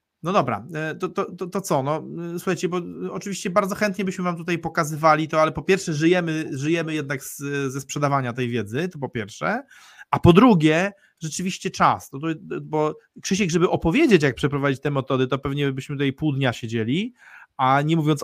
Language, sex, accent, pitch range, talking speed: Polish, male, native, 145-180 Hz, 185 wpm